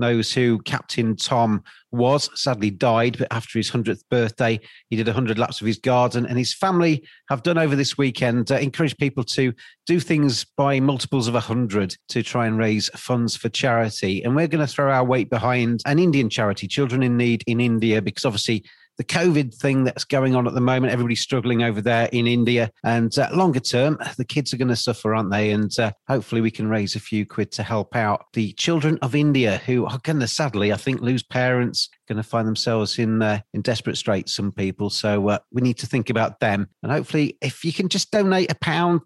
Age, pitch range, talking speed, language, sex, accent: 40-59, 115-140 Hz, 220 wpm, English, male, British